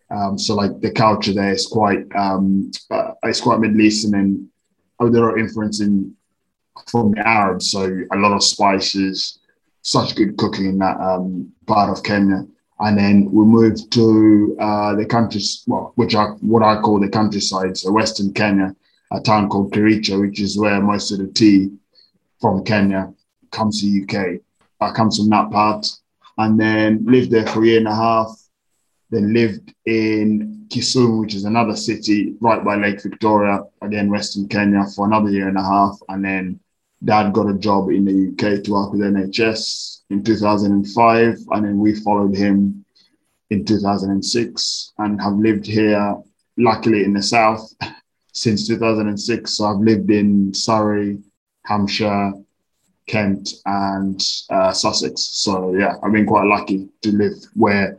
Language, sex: English, male